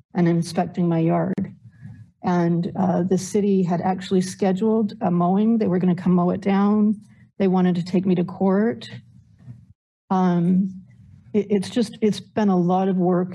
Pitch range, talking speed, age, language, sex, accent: 175-190 Hz, 165 wpm, 50-69, English, female, American